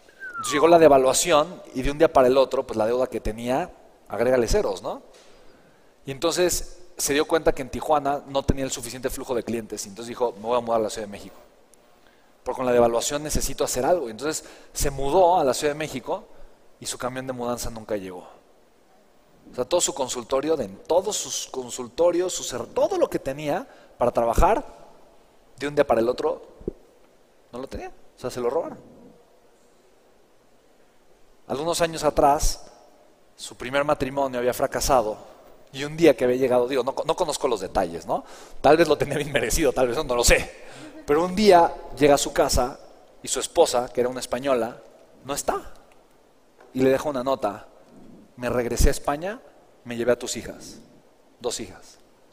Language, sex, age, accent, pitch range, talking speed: Spanish, male, 30-49, Mexican, 125-155 Hz, 185 wpm